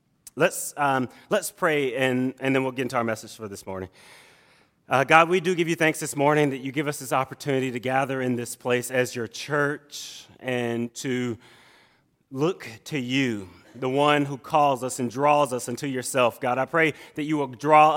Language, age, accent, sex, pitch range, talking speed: English, 30-49, American, male, 125-160 Hz, 200 wpm